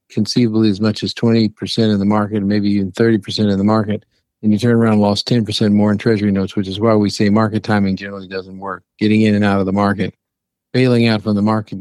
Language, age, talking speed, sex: English, 50-69, 240 wpm, male